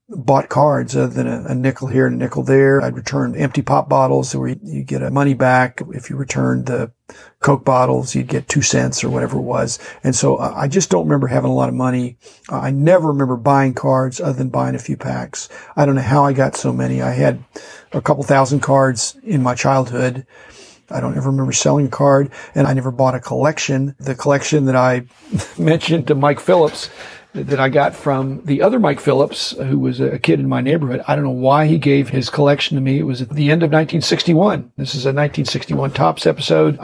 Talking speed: 215 wpm